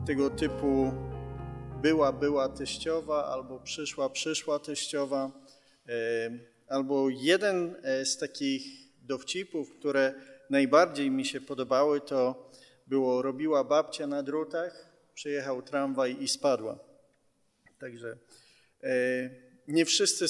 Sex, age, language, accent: male, 30-49, Polish, native